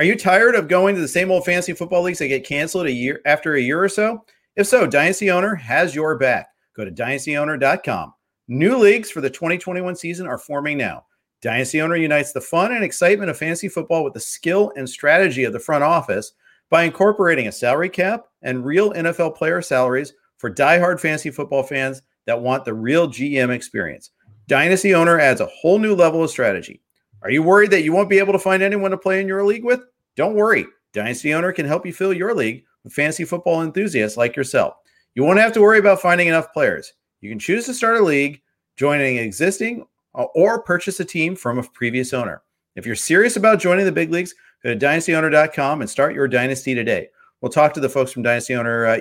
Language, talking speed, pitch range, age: English, 215 wpm, 130-185 Hz, 50-69